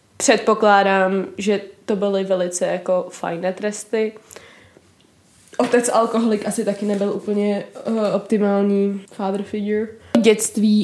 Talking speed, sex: 105 wpm, female